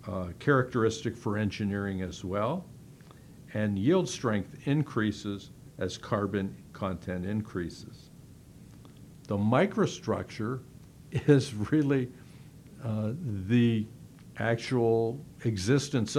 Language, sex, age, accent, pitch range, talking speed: English, male, 60-79, American, 105-140 Hz, 80 wpm